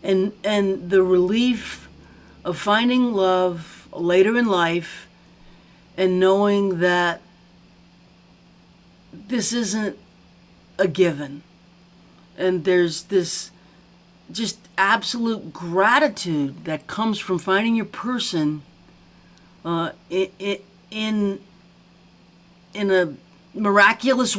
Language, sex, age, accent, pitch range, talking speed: English, female, 40-59, American, 165-205 Hz, 85 wpm